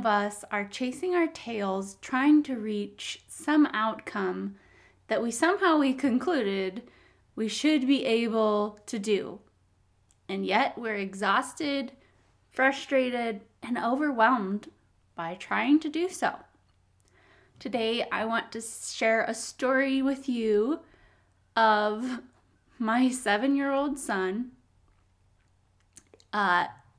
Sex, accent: female, American